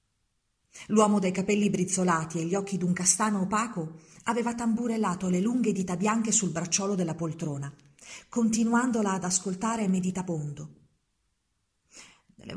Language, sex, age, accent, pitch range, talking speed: Italian, female, 40-59, native, 180-230 Hz, 120 wpm